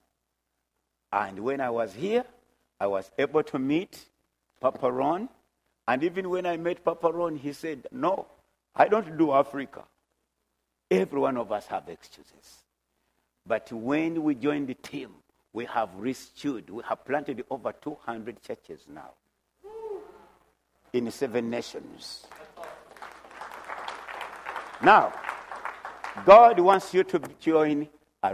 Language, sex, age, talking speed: English, male, 60-79, 120 wpm